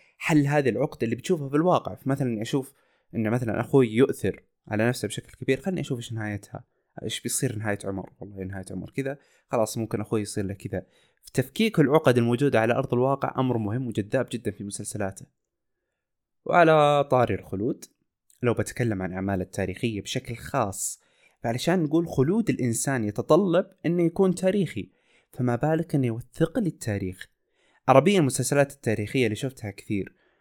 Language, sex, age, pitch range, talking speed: Arabic, male, 20-39, 105-140 Hz, 150 wpm